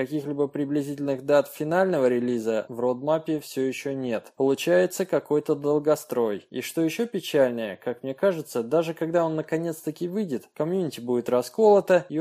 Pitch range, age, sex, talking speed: 120-170 Hz, 20-39, male, 145 wpm